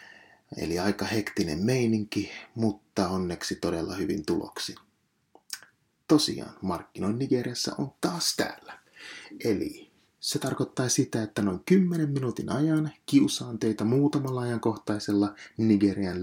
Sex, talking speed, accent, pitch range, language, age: male, 105 wpm, native, 100-130 Hz, Finnish, 30-49